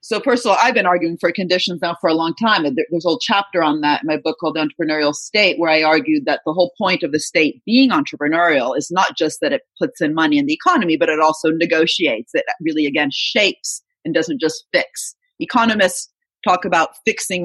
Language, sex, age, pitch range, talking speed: English, female, 40-59, 160-240 Hz, 225 wpm